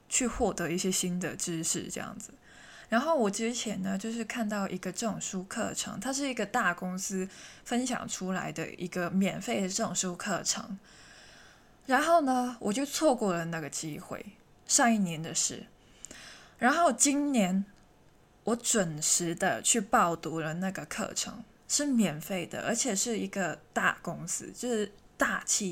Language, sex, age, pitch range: Chinese, female, 20-39, 175-230 Hz